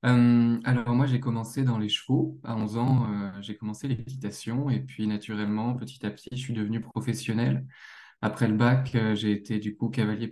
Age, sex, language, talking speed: 20-39, male, French, 200 wpm